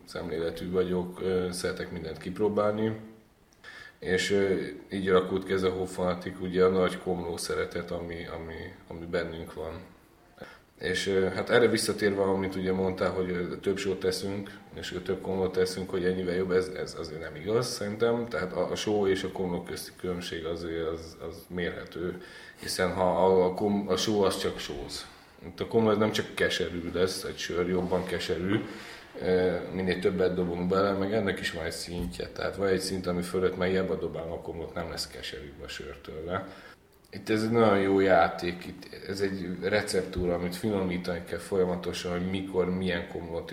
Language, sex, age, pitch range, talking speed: Hungarian, male, 20-39, 85-95 Hz, 165 wpm